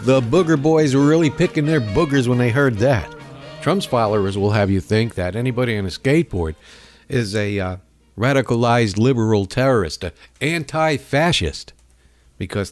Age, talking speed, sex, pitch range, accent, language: 60-79, 150 wpm, male, 95-140 Hz, American, English